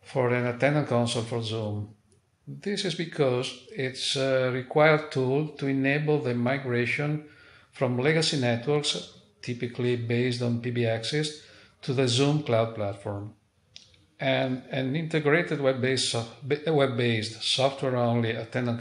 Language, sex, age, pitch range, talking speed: English, male, 50-69, 115-150 Hz, 115 wpm